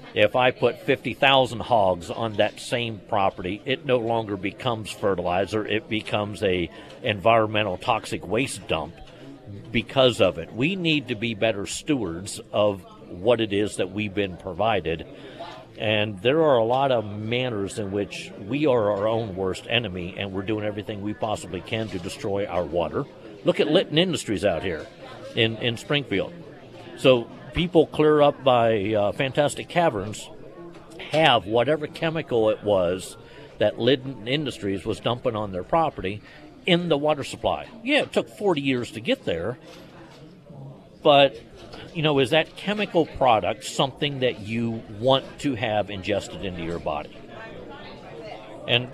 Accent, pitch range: American, 105-140 Hz